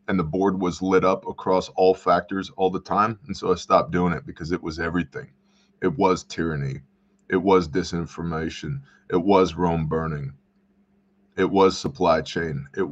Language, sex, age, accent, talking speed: English, male, 20-39, American, 170 wpm